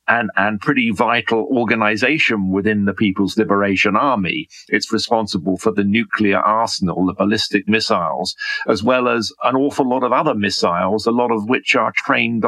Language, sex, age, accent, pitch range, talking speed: English, male, 50-69, British, 105-120 Hz, 165 wpm